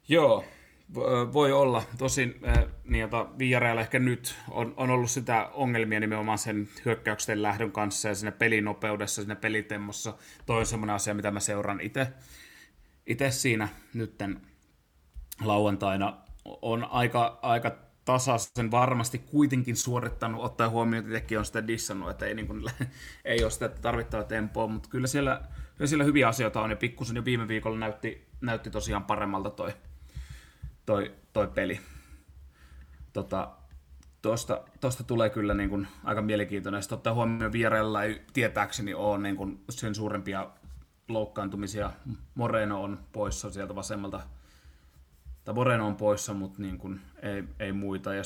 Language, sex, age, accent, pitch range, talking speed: Finnish, male, 30-49, native, 100-115 Hz, 130 wpm